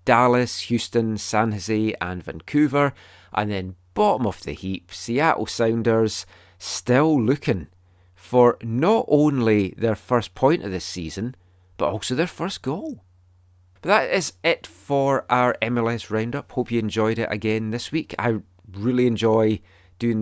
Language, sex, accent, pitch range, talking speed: English, male, British, 95-115 Hz, 145 wpm